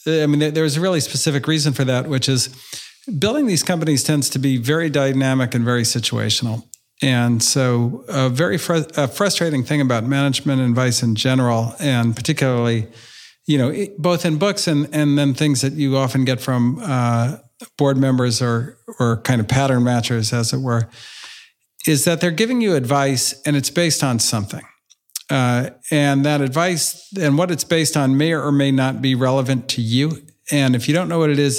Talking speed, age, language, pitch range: 185 wpm, 50-69, English, 120-145 Hz